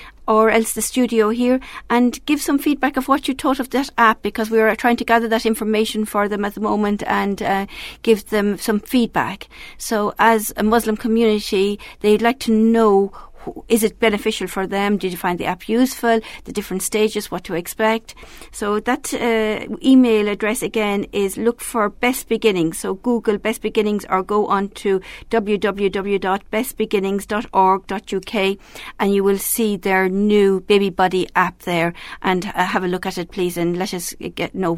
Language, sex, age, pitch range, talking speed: English, female, 50-69, 190-230 Hz, 180 wpm